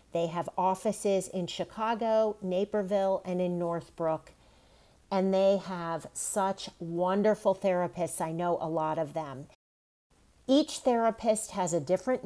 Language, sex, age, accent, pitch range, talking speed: English, female, 40-59, American, 170-210 Hz, 125 wpm